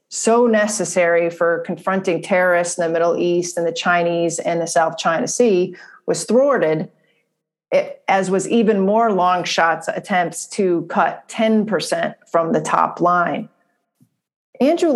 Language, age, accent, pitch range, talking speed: English, 30-49, American, 170-220 Hz, 135 wpm